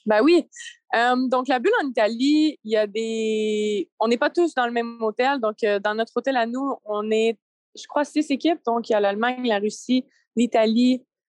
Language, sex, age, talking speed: French, female, 20-39, 220 wpm